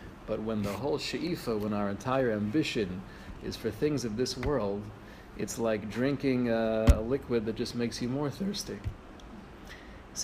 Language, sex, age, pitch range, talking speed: English, male, 40-59, 110-140 Hz, 165 wpm